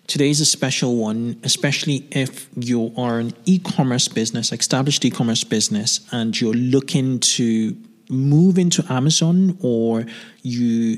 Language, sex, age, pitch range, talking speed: English, male, 20-39, 115-140 Hz, 125 wpm